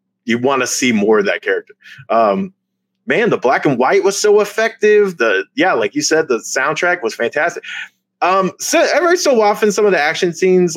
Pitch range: 130-210 Hz